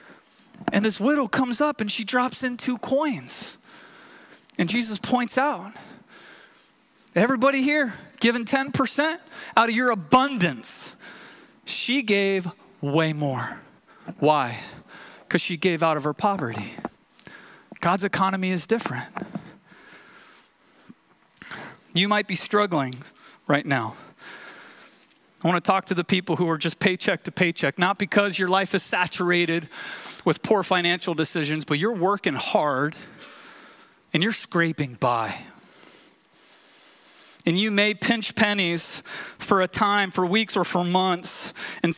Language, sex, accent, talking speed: English, male, American, 125 wpm